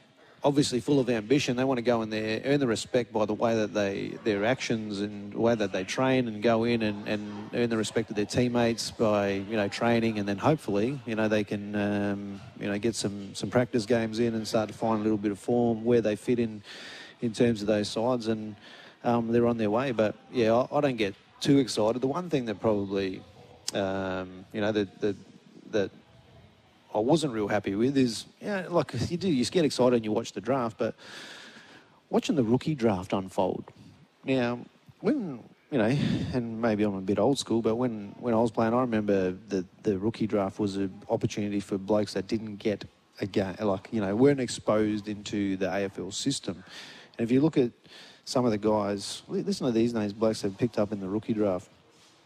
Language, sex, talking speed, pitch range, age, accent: English, male, 220 wpm, 105-120 Hz, 30-49, Australian